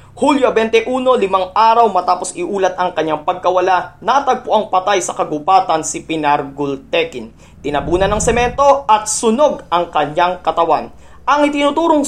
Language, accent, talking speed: Filipino, native, 135 wpm